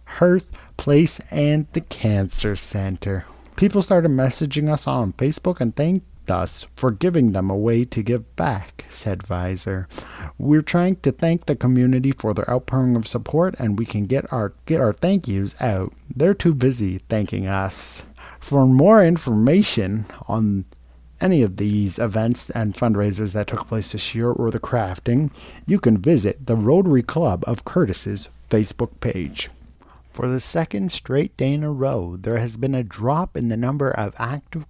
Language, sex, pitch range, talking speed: English, male, 100-140 Hz, 165 wpm